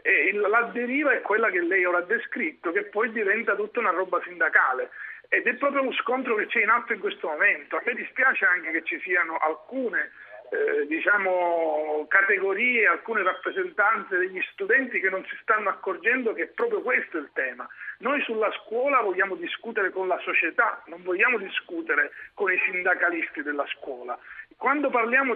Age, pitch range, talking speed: 50-69, 195-290 Hz, 175 wpm